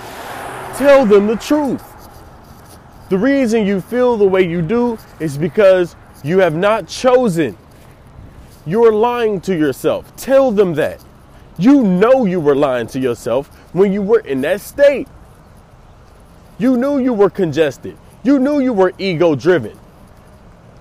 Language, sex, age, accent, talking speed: English, male, 20-39, American, 140 wpm